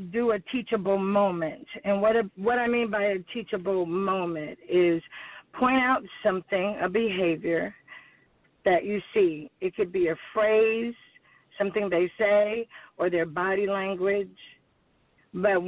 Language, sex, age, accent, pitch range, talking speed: English, female, 50-69, American, 180-220 Hz, 140 wpm